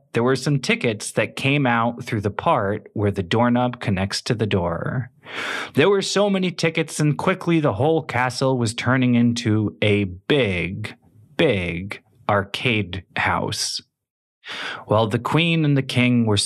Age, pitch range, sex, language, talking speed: 30-49, 105-160 Hz, male, English, 155 wpm